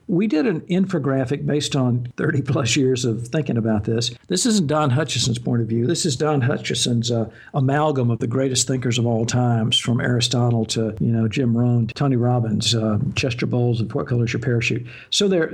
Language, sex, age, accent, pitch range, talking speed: English, male, 60-79, American, 120-150 Hz, 200 wpm